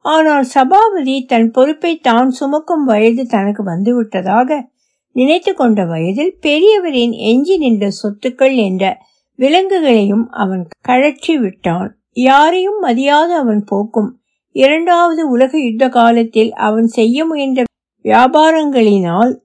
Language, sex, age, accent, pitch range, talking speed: Tamil, female, 60-79, native, 215-295 Hz, 100 wpm